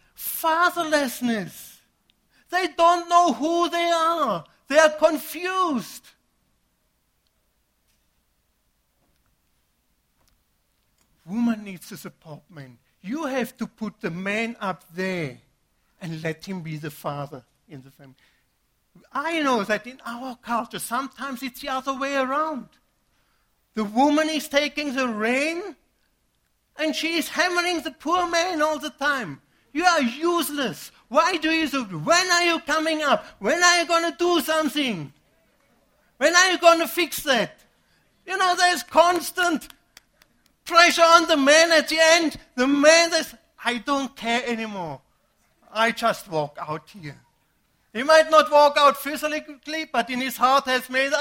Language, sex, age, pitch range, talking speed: English, male, 60-79, 195-320 Hz, 140 wpm